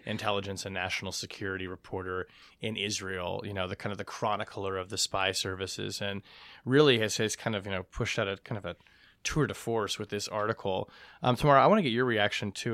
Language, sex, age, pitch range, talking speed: English, male, 20-39, 100-120 Hz, 220 wpm